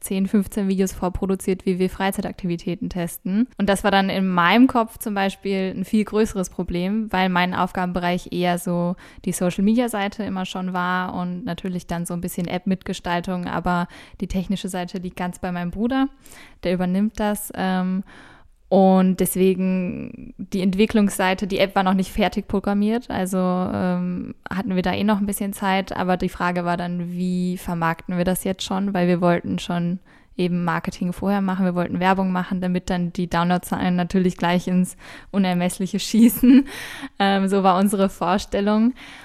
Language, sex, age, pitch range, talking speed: German, female, 10-29, 180-200 Hz, 165 wpm